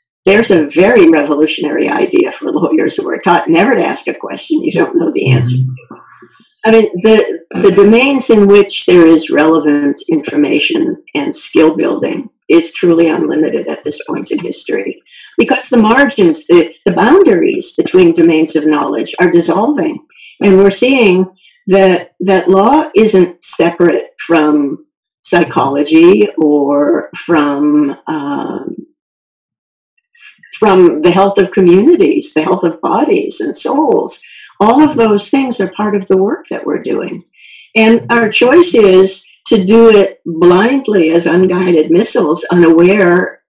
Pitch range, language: 170-265 Hz, English